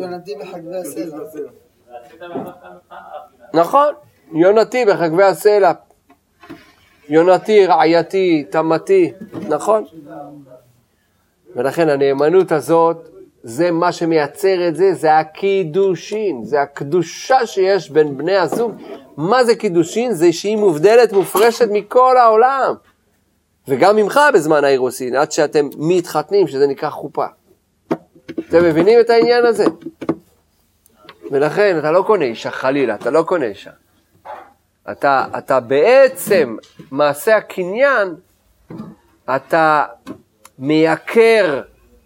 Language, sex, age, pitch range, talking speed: Hebrew, male, 40-59, 150-220 Hz, 95 wpm